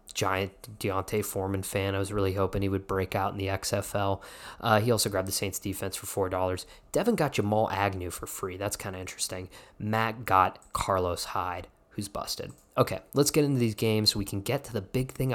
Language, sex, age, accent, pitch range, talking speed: English, male, 20-39, American, 100-130 Hz, 205 wpm